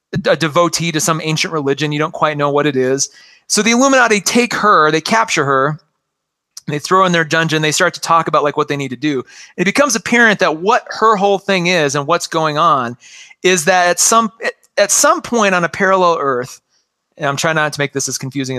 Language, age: English, 30-49